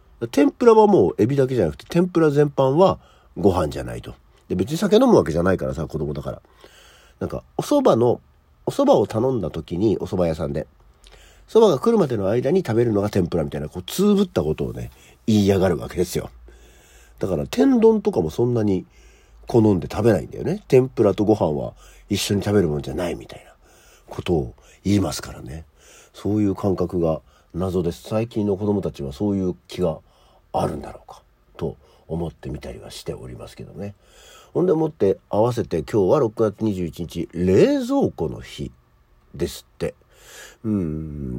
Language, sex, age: Japanese, male, 50-69